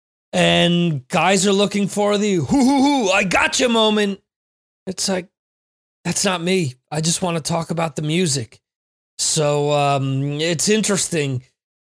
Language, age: English, 30-49